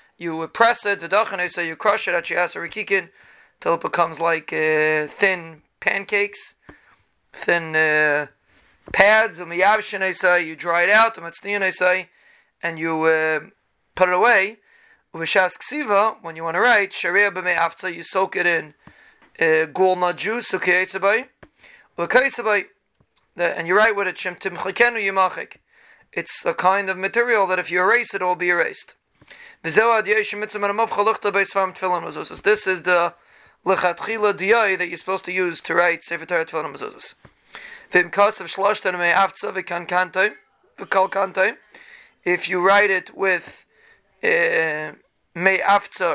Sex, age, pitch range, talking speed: male, 30-49, 175-205 Hz, 130 wpm